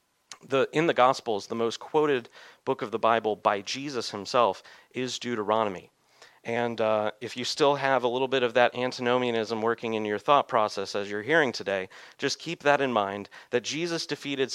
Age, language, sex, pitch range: 40-59, English, male, 110-145 Hz